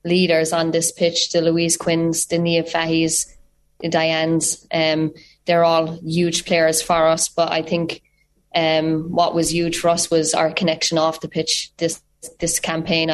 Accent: Irish